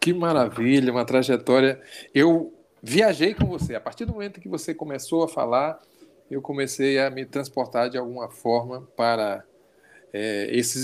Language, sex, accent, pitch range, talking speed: Portuguese, male, Brazilian, 115-150 Hz, 155 wpm